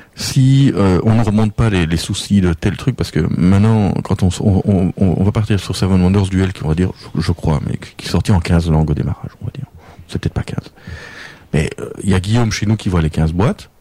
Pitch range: 90-120 Hz